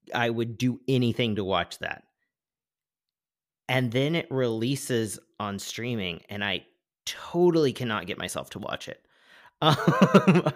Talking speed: 130 wpm